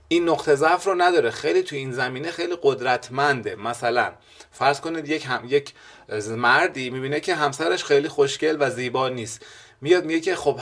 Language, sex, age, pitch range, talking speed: Persian, male, 30-49, 120-155 Hz, 170 wpm